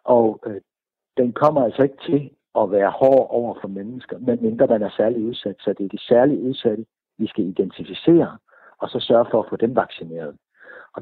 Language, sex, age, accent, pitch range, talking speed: Danish, male, 60-79, native, 110-155 Hz, 200 wpm